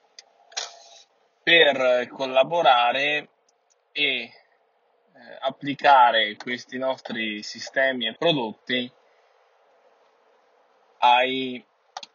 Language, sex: Italian, male